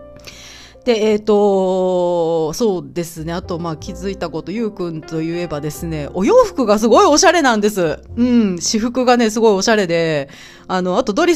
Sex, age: female, 40-59